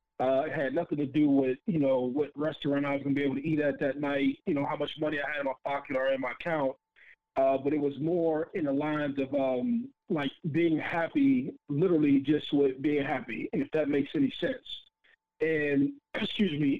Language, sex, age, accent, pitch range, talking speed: English, male, 40-59, American, 140-165 Hz, 225 wpm